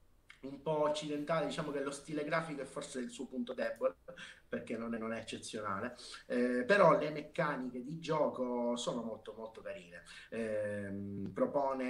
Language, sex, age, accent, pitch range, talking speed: Italian, male, 30-49, native, 115-145 Hz, 155 wpm